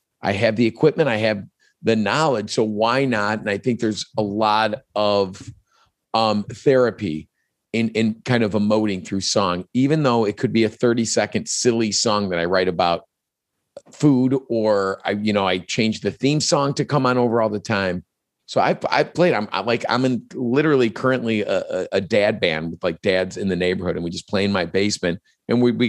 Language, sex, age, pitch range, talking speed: English, male, 40-59, 100-125 Hz, 205 wpm